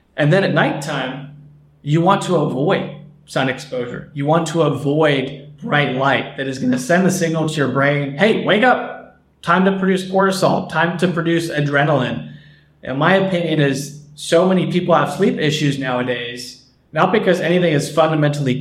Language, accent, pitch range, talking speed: English, American, 135-165 Hz, 170 wpm